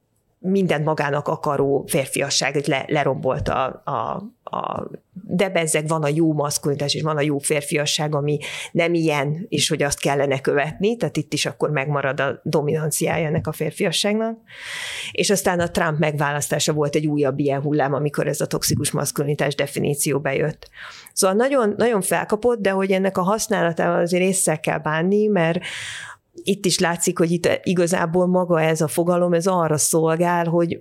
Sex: female